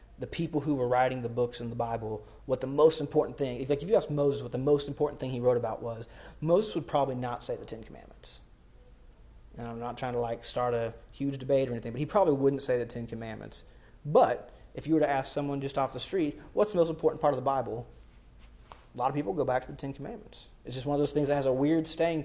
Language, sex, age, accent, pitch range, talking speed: English, male, 30-49, American, 120-145 Hz, 260 wpm